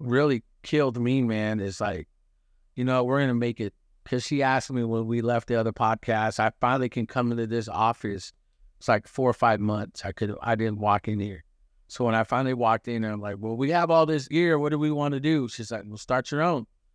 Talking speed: 240 wpm